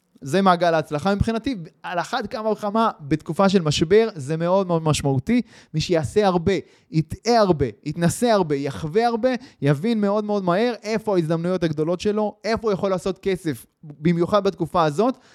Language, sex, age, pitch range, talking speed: Hebrew, male, 20-39, 145-210 Hz, 155 wpm